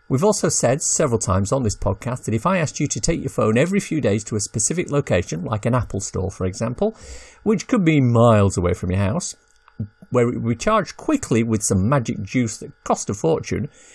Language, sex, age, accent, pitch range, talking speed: English, male, 50-69, British, 110-160 Hz, 225 wpm